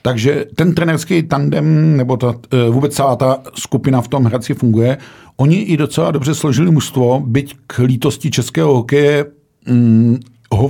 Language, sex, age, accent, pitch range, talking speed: Czech, male, 50-69, native, 115-140 Hz, 150 wpm